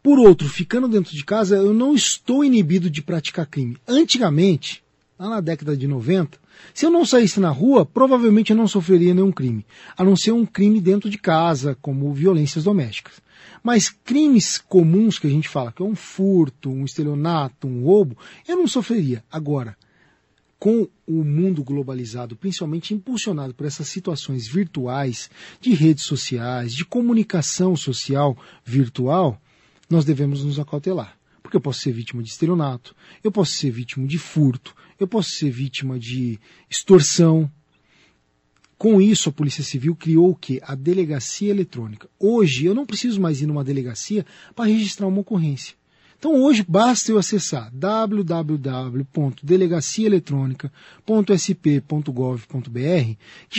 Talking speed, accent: 145 wpm, Brazilian